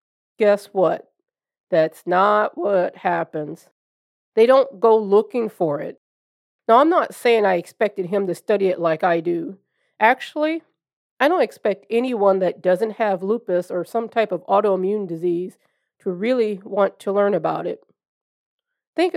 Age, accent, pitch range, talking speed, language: 40-59, American, 180-225 Hz, 150 wpm, English